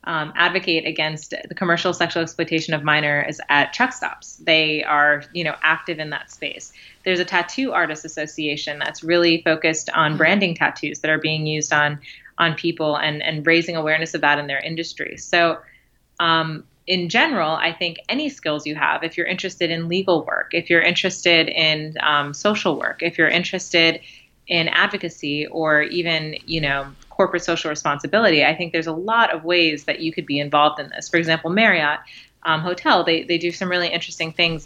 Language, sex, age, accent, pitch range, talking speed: English, female, 20-39, American, 155-180 Hz, 185 wpm